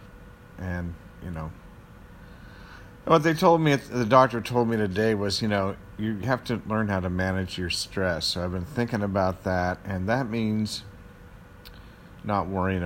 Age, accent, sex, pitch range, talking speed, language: 50-69, American, male, 90-105 Hz, 165 wpm, English